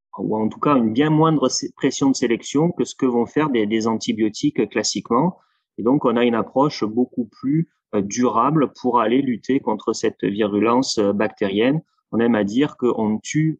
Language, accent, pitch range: English, French, 105-130 Hz